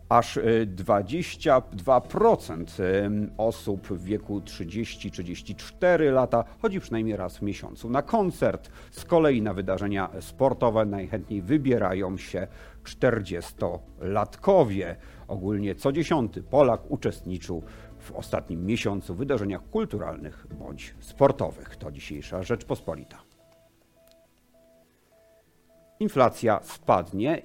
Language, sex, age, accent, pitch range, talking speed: Polish, male, 50-69, native, 95-120 Hz, 90 wpm